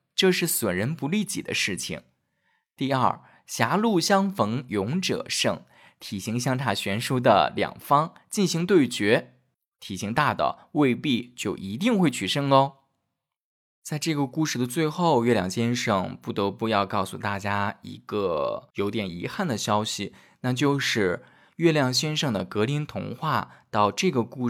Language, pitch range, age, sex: Chinese, 110-170 Hz, 20-39, male